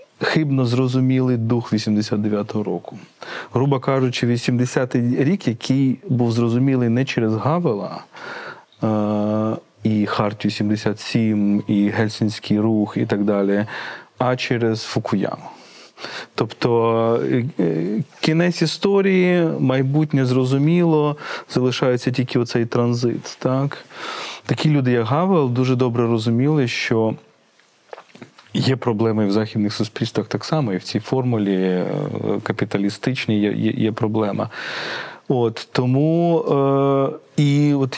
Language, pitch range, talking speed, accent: Ukrainian, 110-145 Hz, 100 wpm, native